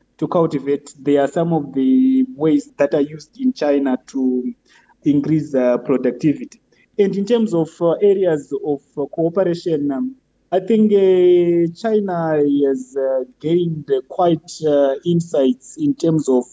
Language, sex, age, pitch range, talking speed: English, male, 30-49, 140-180 Hz, 150 wpm